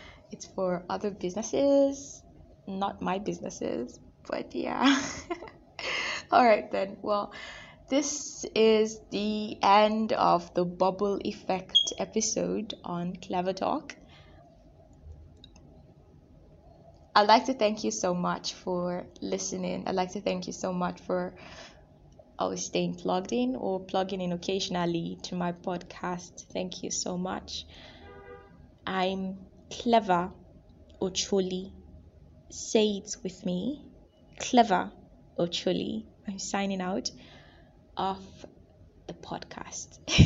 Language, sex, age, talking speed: English, female, 20-39, 110 wpm